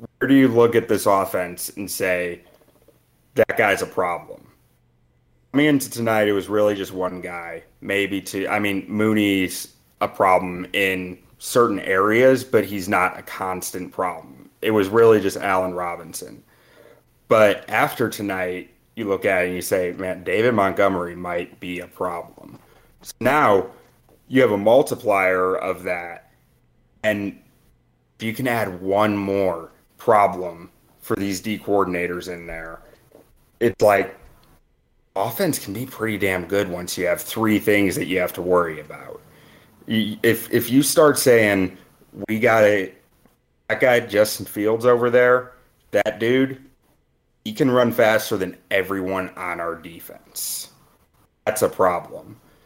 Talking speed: 150 wpm